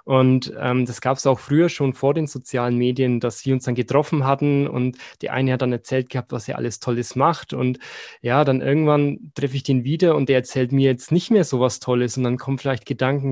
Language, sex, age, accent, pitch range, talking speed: German, male, 20-39, German, 125-140 Hz, 235 wpm